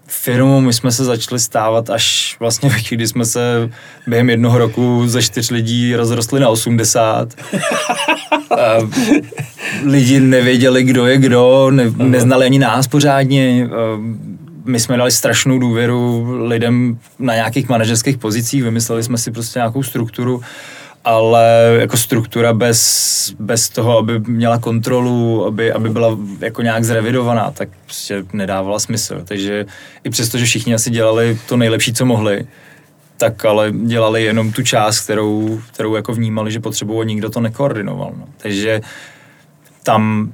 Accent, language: native, Czech